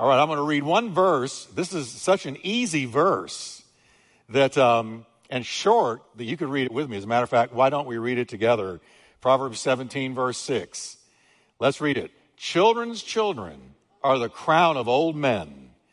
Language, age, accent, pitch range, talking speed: English, 60-79, American, 110-135 Hz, 190 wpm